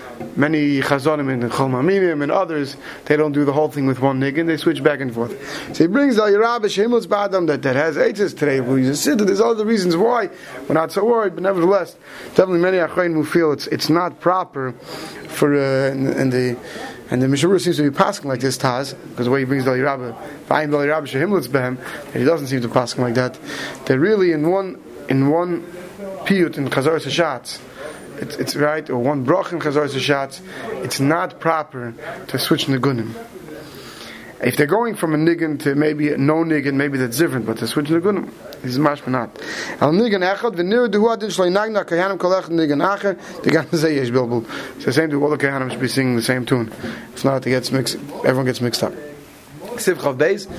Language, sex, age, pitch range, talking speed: English, male, 30-49, 135-180 Hz, 170 wpm